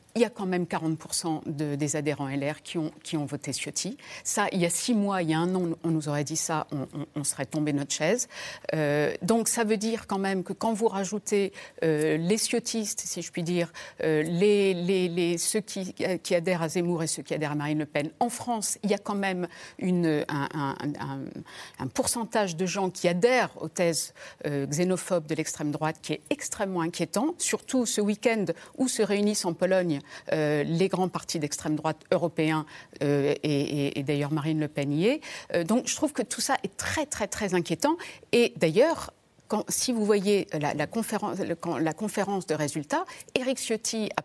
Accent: French